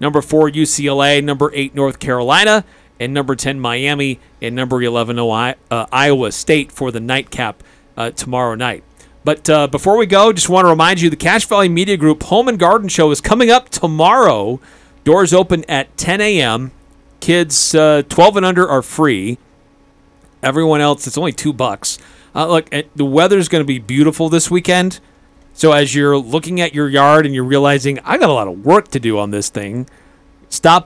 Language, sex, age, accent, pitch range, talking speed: English, male, 40-59, American, 130-165 Hz, 185 wpm